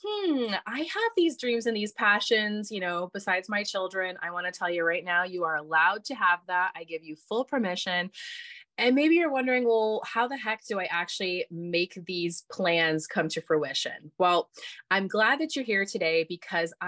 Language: English